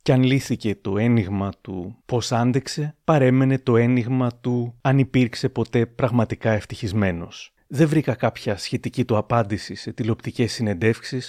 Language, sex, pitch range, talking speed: Greek, male, 110-135 Hz, 140 wpm